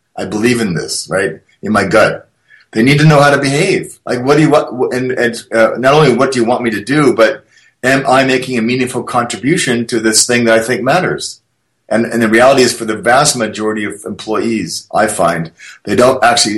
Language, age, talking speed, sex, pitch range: English, 30-49, 225 wpm, male, 100-140 Hz